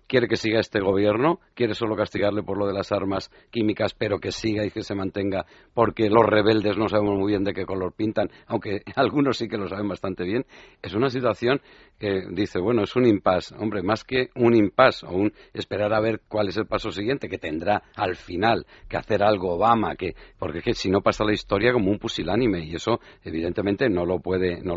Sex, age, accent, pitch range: male, 60-79, Spanish, 95-120 Hz